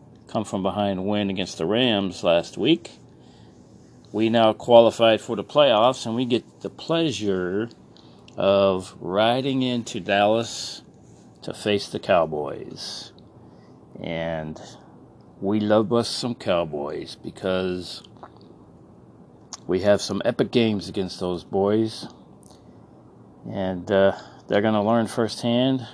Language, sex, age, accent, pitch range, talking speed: English, male, 40-59, American, 95-120 Hz, 115 wpm